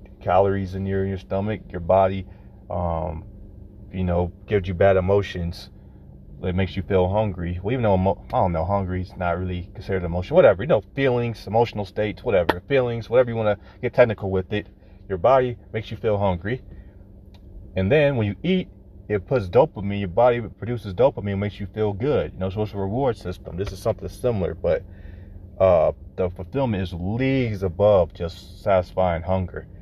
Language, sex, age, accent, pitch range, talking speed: English, male, 30-49, American, 95-110 Hz, 185 wpm